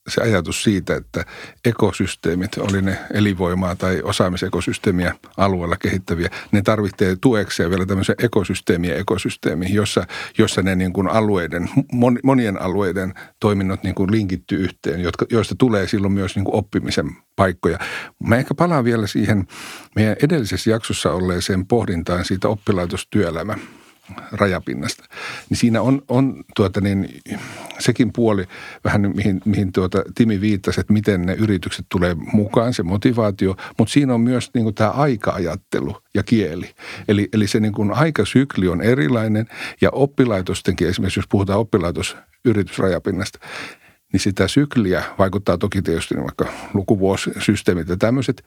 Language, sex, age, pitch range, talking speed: Finnish, male, 60-79, 95-110 Hz, 130 wpm